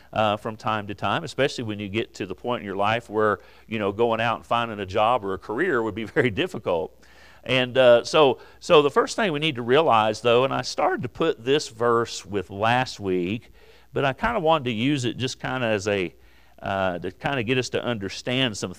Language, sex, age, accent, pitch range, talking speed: English, male, 50-69, American, 105-135 Hz, 240 wpm